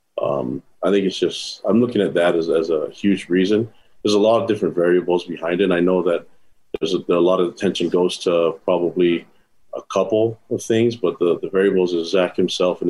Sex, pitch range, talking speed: male, 90-110 Hz, 215 wpm